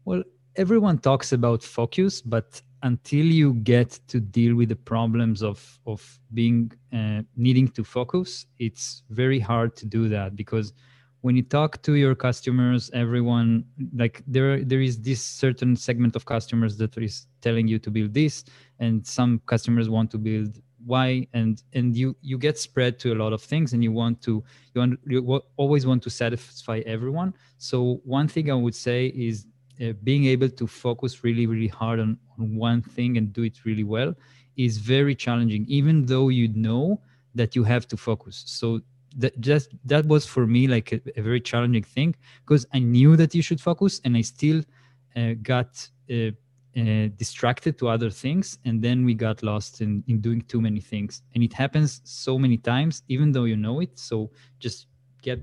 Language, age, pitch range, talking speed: English, 20-39, 115-130 Hz, 185 wpm